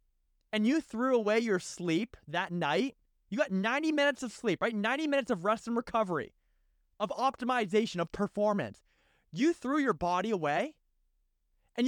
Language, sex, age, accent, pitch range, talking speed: English, male, 20-39, American, 195-275 Hz, 155 wpm